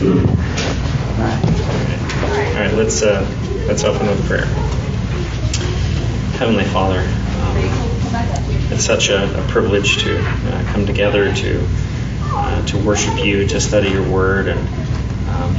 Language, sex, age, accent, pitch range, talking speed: English, male, 30-49, American, 100-115 Hz, 130 wpm